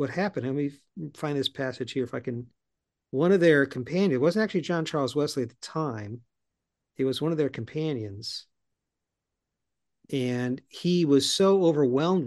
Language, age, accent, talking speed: English, 50-69, American, 170 wpm